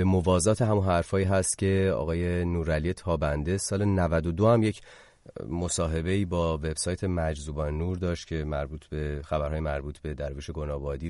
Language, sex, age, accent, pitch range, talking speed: English, male, 30-49, Canadian, 80-100 Hz, 150 wpm